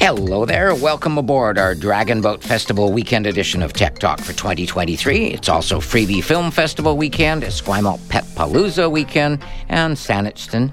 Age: 50-69